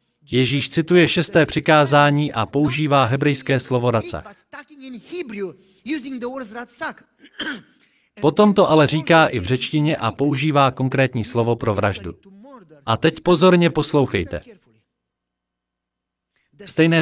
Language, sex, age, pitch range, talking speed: Slovak, male, 40-59, 115-160 Hz, 95 wpm